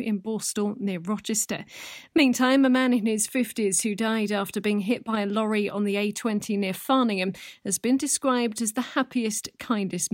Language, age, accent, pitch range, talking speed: English, 40-59, British, 195-240 Hz, 180 wpm